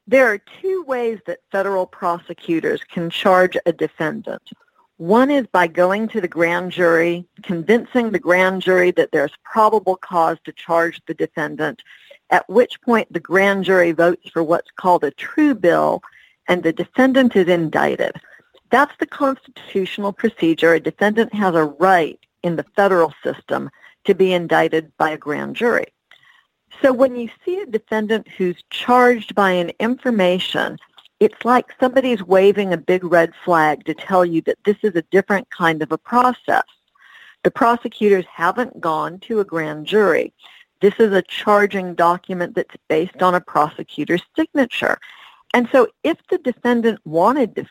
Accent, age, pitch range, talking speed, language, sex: American, 50-69, 170-240 Hz, 160 wpm, English, female